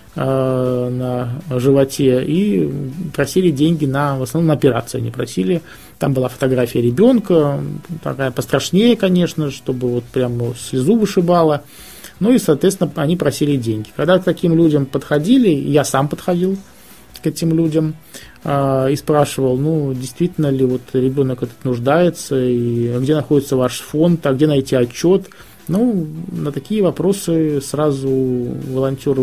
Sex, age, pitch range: male, 20-39, 130-165 Hz